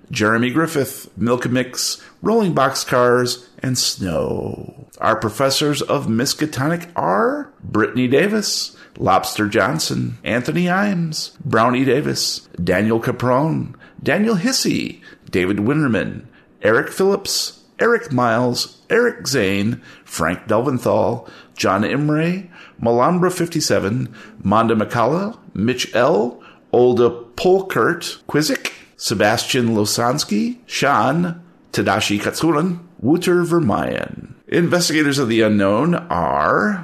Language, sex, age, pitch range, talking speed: English, male, 50-69, 110-175 Hz, 95 wpm